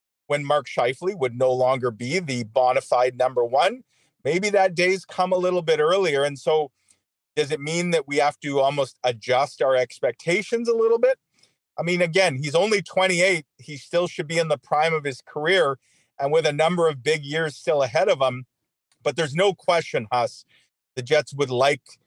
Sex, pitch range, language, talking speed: male, 135-180 Hz, English, 195 wpm